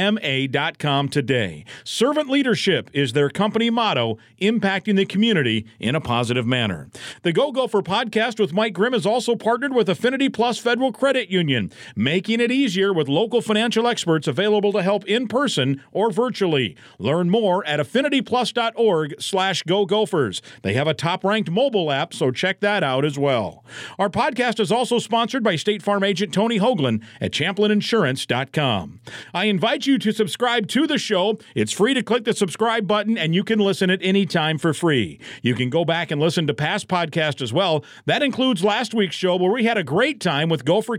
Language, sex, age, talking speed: English, male, 50-69, 180 wpm